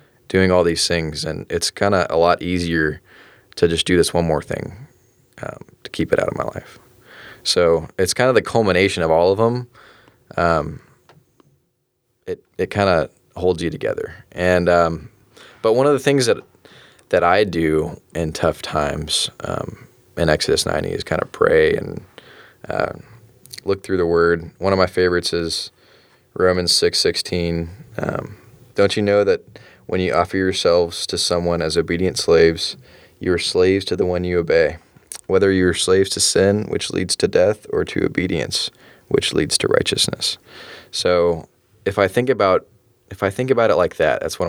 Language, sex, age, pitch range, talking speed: English, male, 20-39, 85-105 Hz, 180 wpm